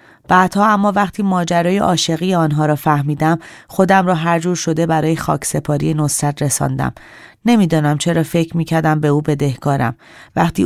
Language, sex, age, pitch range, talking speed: Persian, female, 30-49, 150-180 Hz, 140 wpm